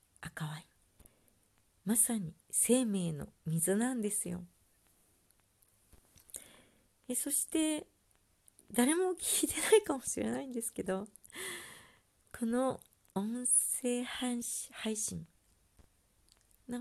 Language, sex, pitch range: Japanese, female, 160-230 Hz